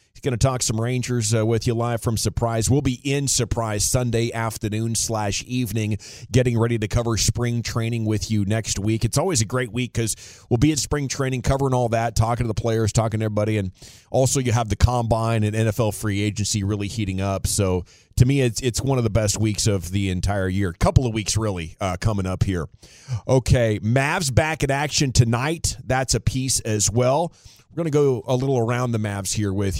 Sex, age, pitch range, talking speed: male, 30-49, 105-130 Hz, 220 wpm